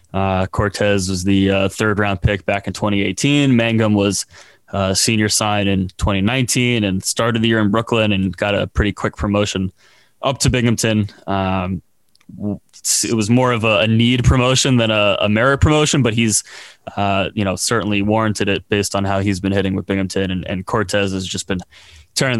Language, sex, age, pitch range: English, male, 20-39, 95-110 Hz